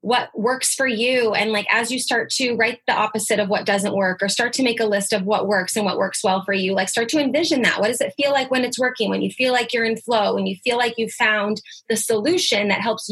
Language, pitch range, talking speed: English, 205-245 Hz, 285 wpm